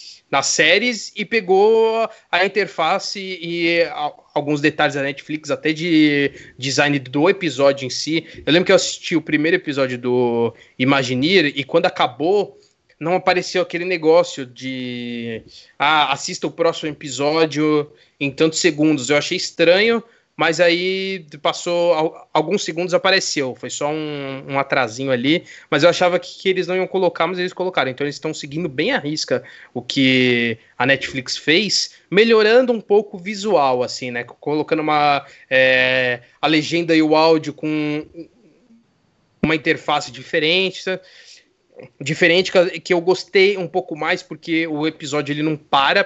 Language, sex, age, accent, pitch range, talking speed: Portuguese, male, 20-39, Brazilian, 140-180 Hz, 145 wpm